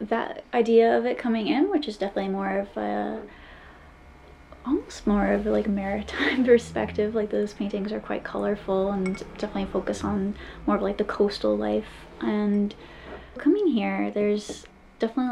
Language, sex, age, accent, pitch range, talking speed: English, female, 20-39, American, 185-215 Hz, 155 wpm